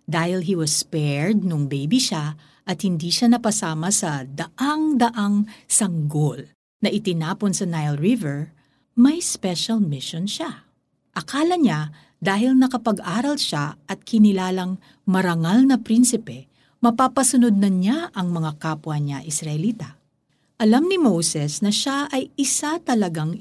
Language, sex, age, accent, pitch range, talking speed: Filipino, female, 50-69, native, 155-245 Hz, 125 wpm